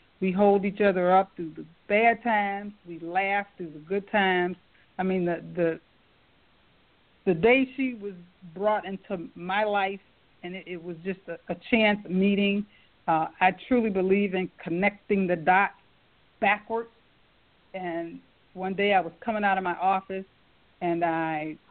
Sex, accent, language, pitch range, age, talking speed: female, American, English, 180-220 Hz, 50-69, 155 wpm